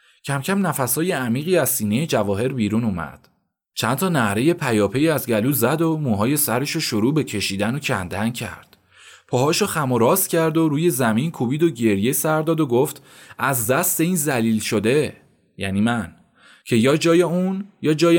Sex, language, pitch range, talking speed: male, Persian, 115-155 Hz, 165 wpm